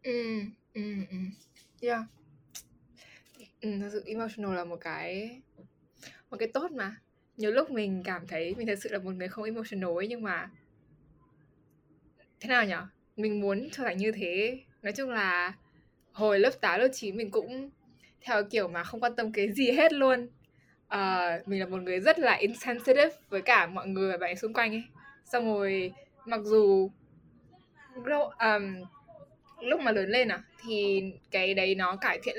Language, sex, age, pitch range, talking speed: Vietnamese, female, 10-29, 185-240 Hz, 175 wpm